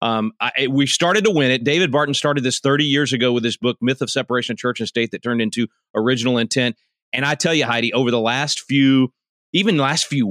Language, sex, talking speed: English, male, 240 wpm